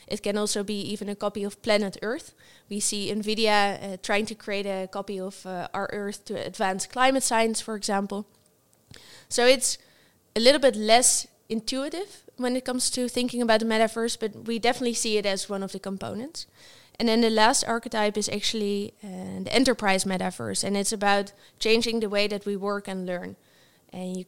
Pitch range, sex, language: 200-225 Hz, female, English